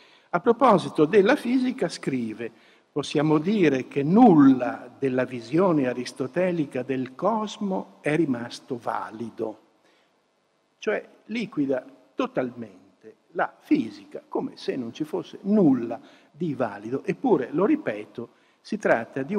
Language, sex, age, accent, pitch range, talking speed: Italian, male, 60-79, native, 135-200 Hz, 110 wpm